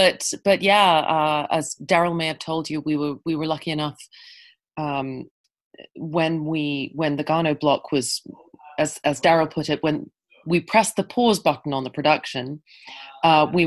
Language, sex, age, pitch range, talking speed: English, female, 30-49, 145-175 Hz, 175 wpm